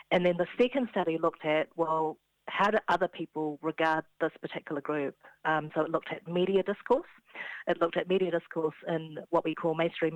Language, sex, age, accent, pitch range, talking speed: English, female, 40-59, Australian, 155-185 Hz, 195 wpm